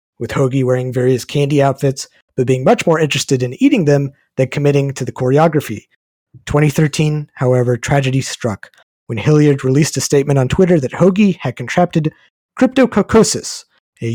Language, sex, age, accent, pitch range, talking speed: English, male, 30-49, American, 130-165 Hz, 155 wpm